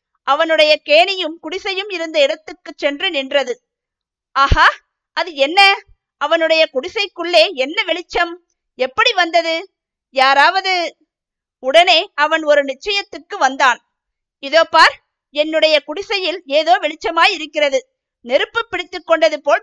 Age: 50-69